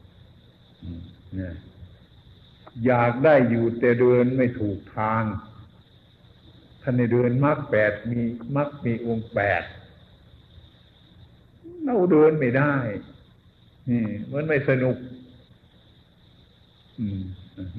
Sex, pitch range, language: male, 105-130 Hz, Thai